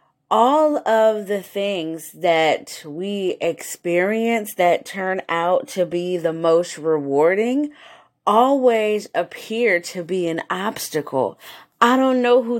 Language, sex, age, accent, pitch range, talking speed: English, female, 30-49, American, 170-225 Hz, 120 wpm